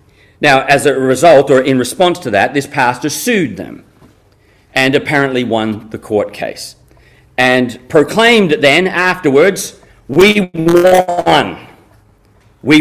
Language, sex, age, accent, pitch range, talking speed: English, male, 40-59, Australian, 105-150 Hz, 120 wpm